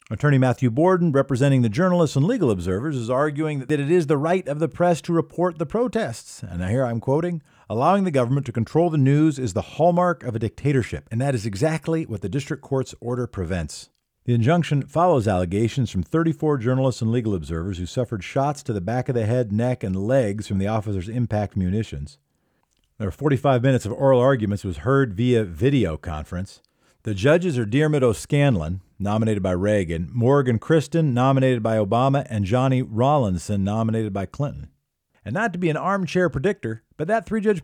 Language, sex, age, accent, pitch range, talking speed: English, male, 50-69, American, 110-165 Hz, 190 wpm